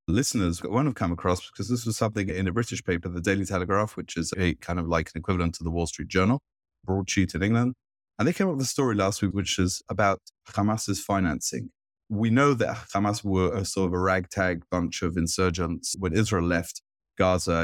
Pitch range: 85-110 Hz